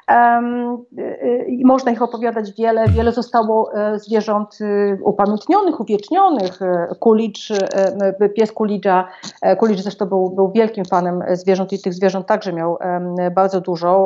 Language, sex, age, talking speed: Polish, female, 40-59, 125 wpm